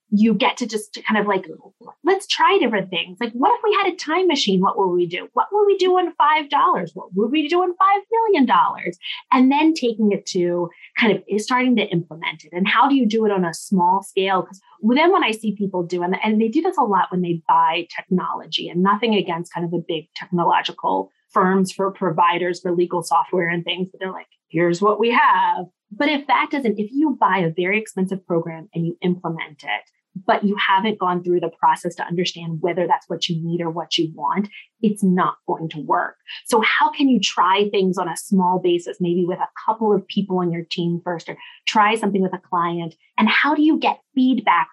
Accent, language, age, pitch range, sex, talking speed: American, English, 20-39, 175-250 Hz, female, 225 wpm